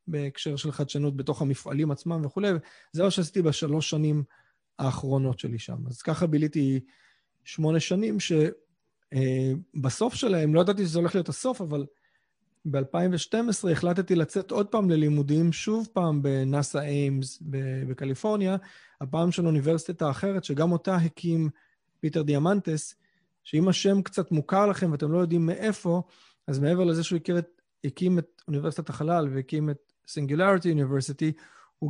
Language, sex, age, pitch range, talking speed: Hebrew, male, 30-49, 140-175 Hz, 135 wpm